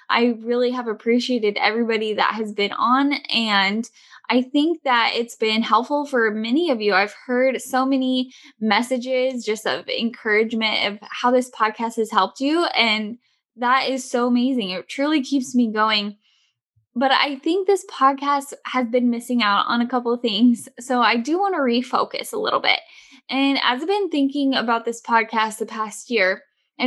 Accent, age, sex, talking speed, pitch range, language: American, 10-29, female, 180 wpm, 225-295 Hz, English